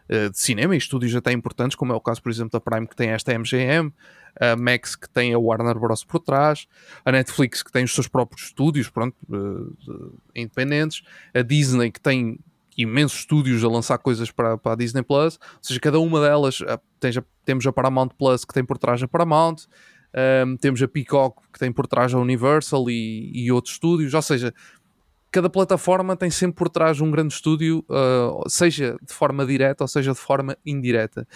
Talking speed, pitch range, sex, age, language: 205 wpm, 125-160 Hz, male, 20-39, Portuguese